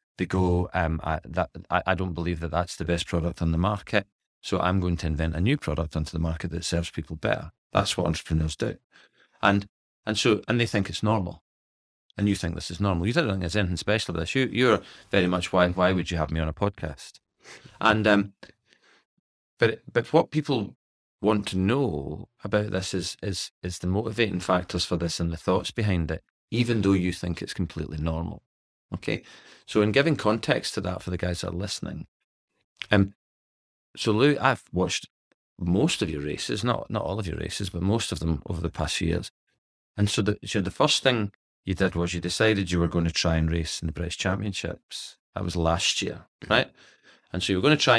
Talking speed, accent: 220 wpm, British